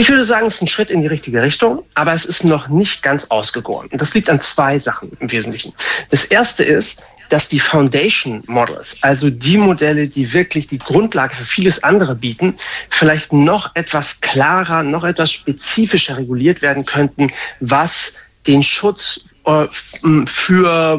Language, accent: German, German